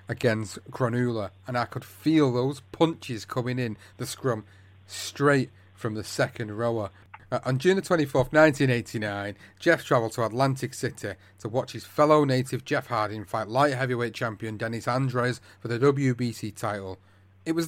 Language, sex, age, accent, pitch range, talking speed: English, male, 30-49, British, 100-135 Hz, 160 wpm